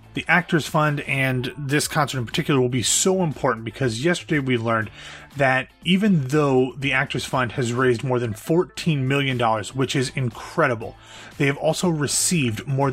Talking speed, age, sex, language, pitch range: 165 wpm, 30-49, male, English, 120-145 Hz